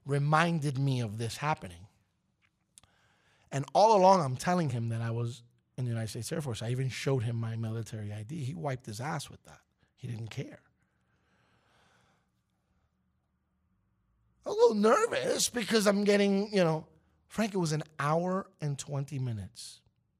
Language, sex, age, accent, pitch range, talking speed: English, male, 30-49, American, 115-175 Hz, 155 wpm